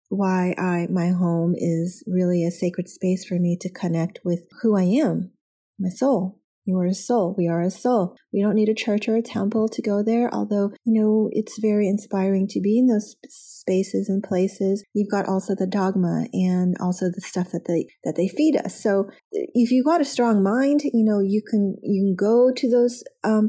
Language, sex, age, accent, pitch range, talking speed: English, female, 30-49, American, 185-220 Hz, 210 wpm